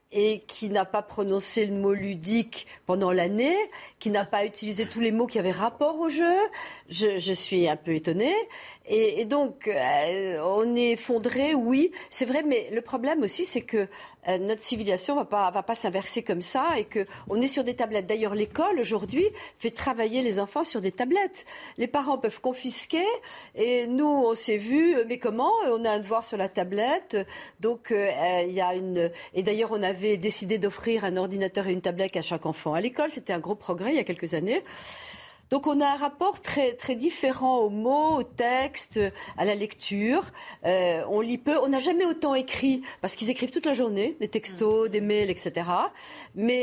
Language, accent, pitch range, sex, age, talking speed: French, French, 190-270 Hz, female, 50-69, 200 wpm